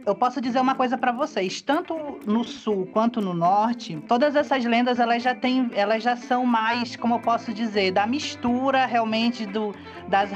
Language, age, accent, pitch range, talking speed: Portuguese, 20-39, Brazilian, 195-235 Hz, 185 wpm